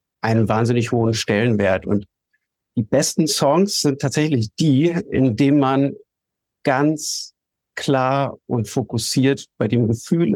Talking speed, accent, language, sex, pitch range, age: 120 wpm, German, German, male, 125-155 Hz, 50-69